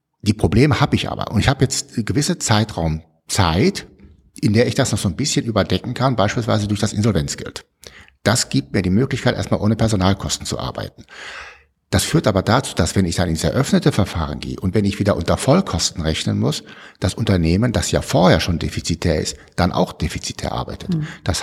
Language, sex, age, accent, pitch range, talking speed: German, male, 60-79, German, 85-120 Hz, 190 wpm